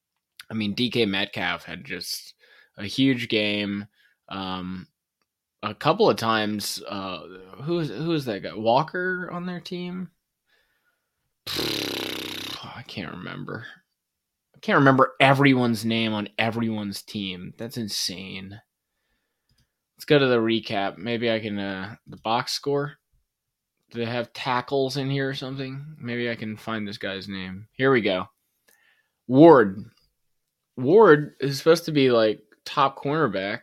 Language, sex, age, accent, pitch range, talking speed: English, male, 20-39, American, 105-135 Hz, 140 wpm